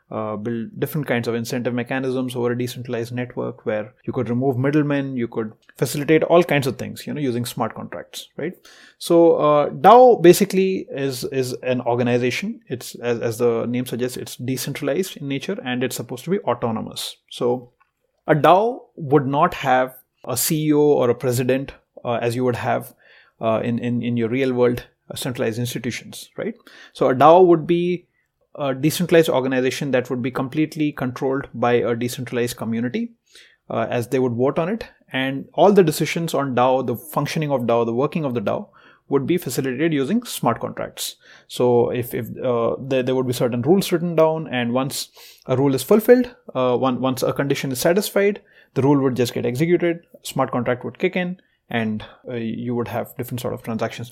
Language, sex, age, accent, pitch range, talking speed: English, male, 30-49, Indian, 120-155 Hz, 185 wpm